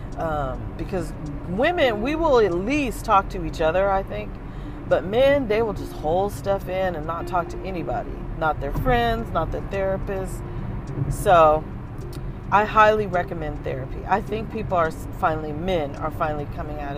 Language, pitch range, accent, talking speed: English, 130-210 Hz, American, 165 wpm